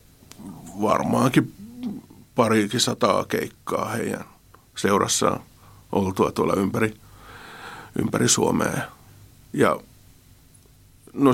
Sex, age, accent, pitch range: male, 50-69, native, 100-120 Hz